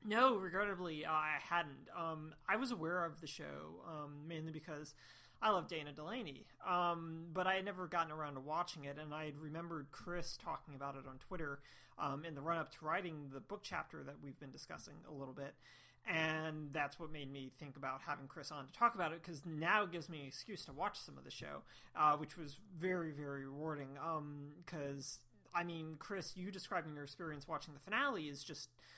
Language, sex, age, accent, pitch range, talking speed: English, male, 30-49, American, 145-175 Hz, 210 wpm